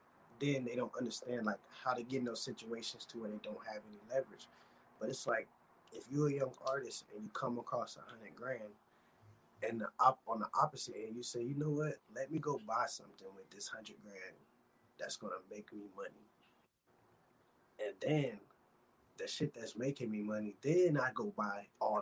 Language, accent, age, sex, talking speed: English, American, 20-39, male, 190 wpm